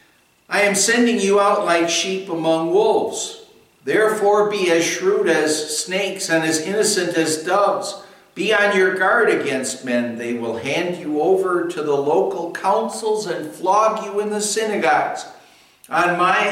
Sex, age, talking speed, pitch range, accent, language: male, 60-79, 155 wpm, 120-190 Hz, American, English